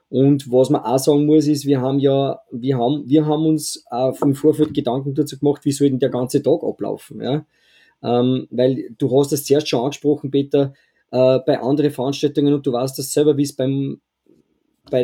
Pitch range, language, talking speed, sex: 140-160 Hz, German, 200 wpm, male